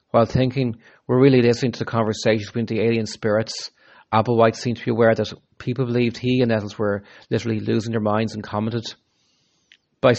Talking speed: 185 wpm